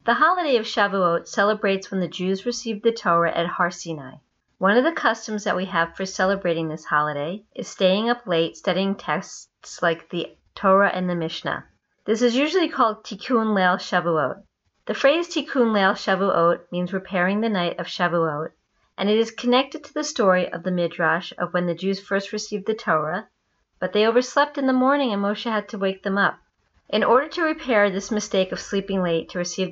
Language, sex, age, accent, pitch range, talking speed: English, female, 50-69, American, 180-225 Hz, 195 wpm